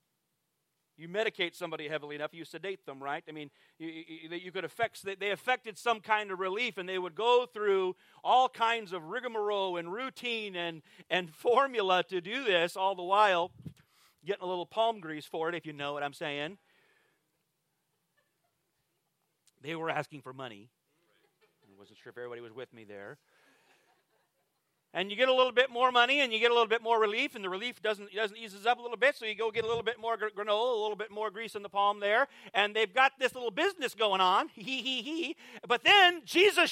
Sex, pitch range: male, 170-260 Hz